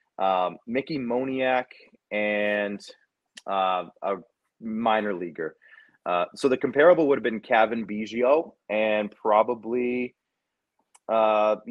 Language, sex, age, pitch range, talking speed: English, male, 30-49, 105-130 Hz, 100 wpm